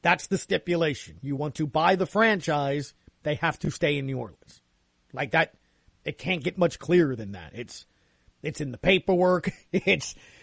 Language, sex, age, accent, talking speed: English, male, 40-59, American, 180 wpm